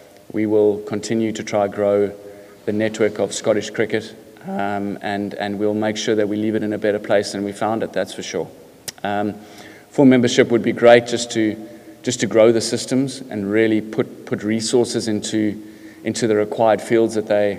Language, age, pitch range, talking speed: English, 20-39, 105-115 Hz, 195 wpm